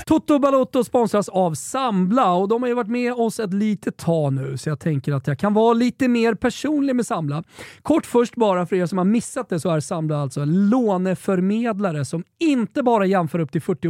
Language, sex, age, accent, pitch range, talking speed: Swedish, male, 30-49, native, 155-220 Hz, 210 wpm